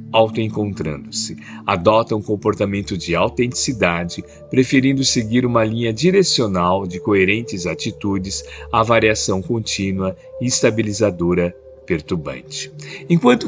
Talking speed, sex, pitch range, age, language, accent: 95 wpm, male, 95-130 Hz, 50-69, Portuguese, Brazilian